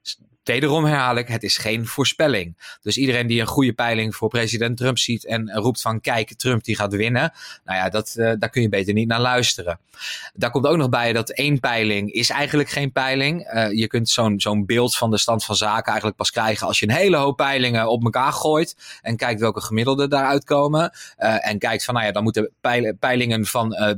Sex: male